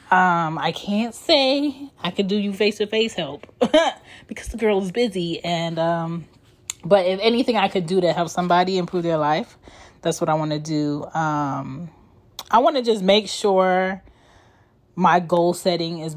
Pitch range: 160-200 Hz